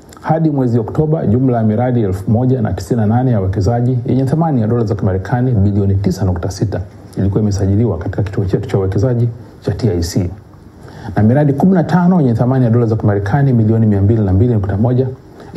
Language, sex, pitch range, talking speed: Swahili, male, 100-130 Hz, 145 wpm